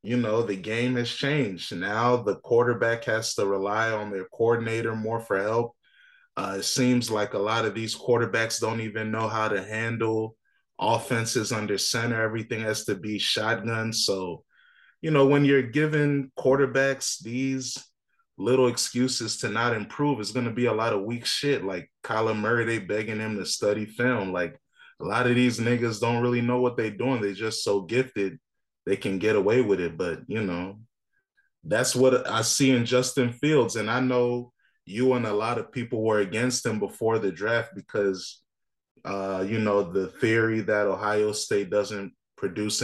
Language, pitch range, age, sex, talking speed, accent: English, 110-125 Hz, 20-39, male, 180 wpm, American